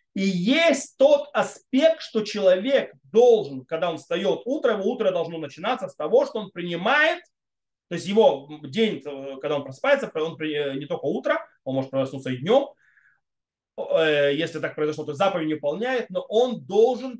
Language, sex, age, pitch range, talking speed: Russian, male, 20-39, 155-235 Hz, 160 wpm